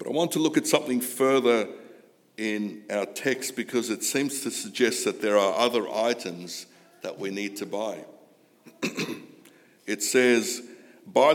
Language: English